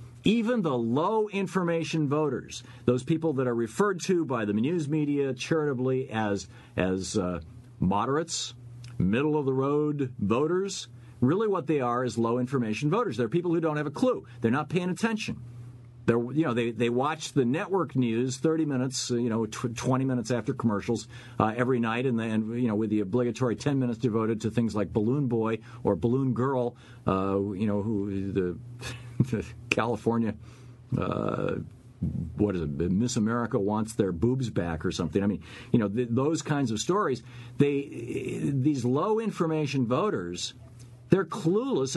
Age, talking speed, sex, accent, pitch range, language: 50-69, 155 wpm, male, American, 115-140 Hz, English